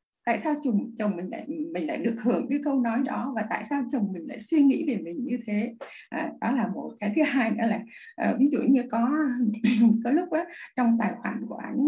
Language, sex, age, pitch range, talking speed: Vietnamese, female, 20-39, 220-280 Hz, 240 wpm